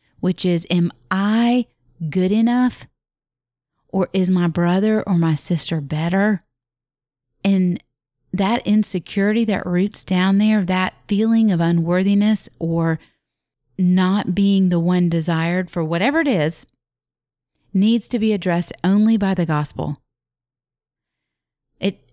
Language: English